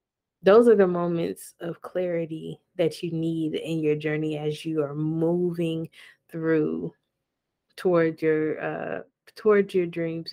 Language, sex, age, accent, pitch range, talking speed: English, female, 20-39, American, 160-180 Hz, 120 wpm